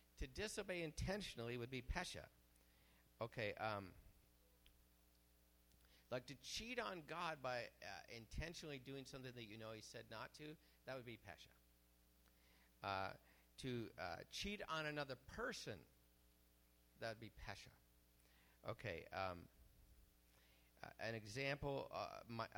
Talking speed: 120 wpm